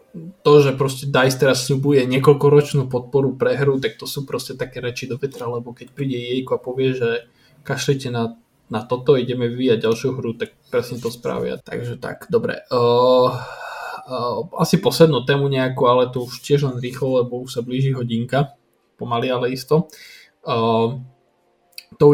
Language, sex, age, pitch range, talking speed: Slovak, male, 20-39, 120-140 Hz, 165 wpm